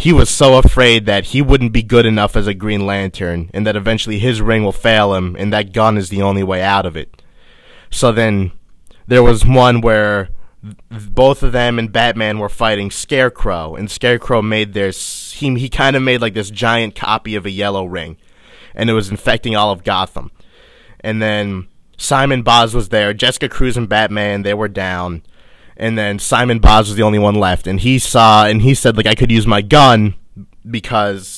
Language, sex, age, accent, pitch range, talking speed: English, male, 20-39, American, 100-115 Hz, 200 wpm